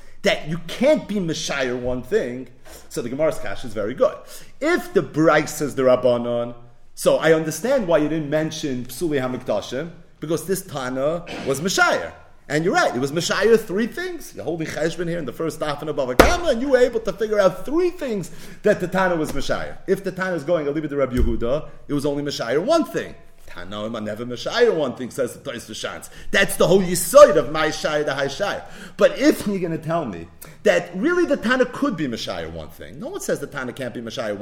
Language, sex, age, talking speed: English, male, 40-59, 225 wpm